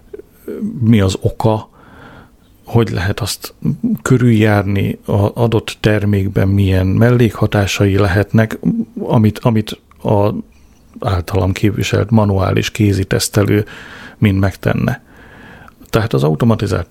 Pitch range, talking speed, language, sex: 100-120 Hz, 90 wpm, Hungarian, male